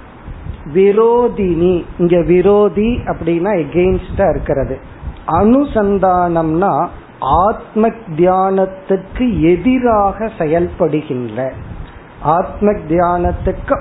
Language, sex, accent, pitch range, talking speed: Tamil, male, native, 150-200 Hz, 45 wpm